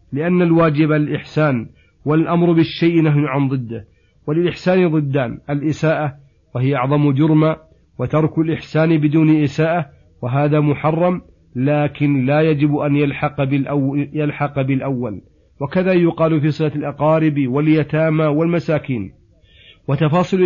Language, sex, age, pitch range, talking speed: Arabic, male, 40-59, 140-155 Hz, 100 wpm